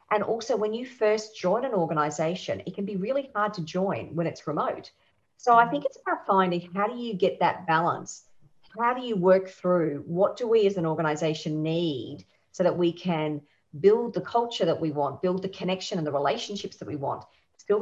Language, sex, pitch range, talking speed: English, female, 175-220 Hz, 210 wpm